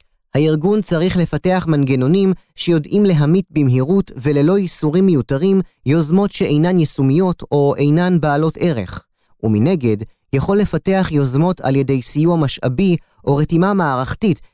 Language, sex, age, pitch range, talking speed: Hebrew, male, 30-49, 125-175 Hz, 115 wpm